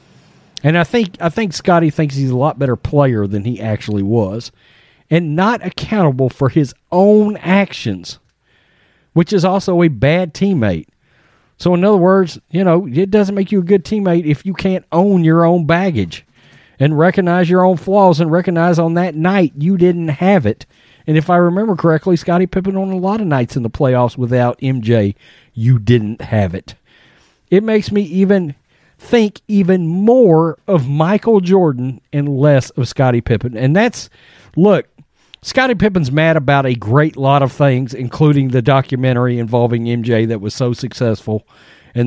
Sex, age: male, 40-59